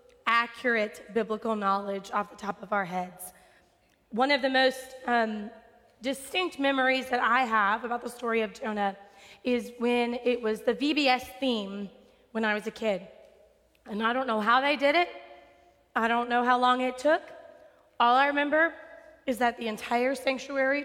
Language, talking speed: English, 170 wpm